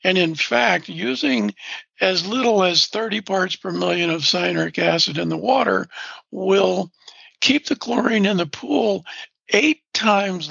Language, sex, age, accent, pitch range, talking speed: English, male, 60-79, American, 185-235 Hz, 150 wpm